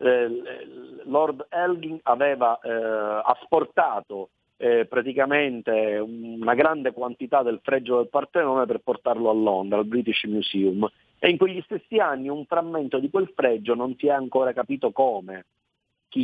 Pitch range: 115-155 Hz